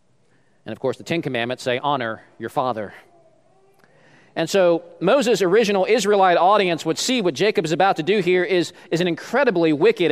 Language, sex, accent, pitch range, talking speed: English, male, American, 145-205 Hz, 180 wpm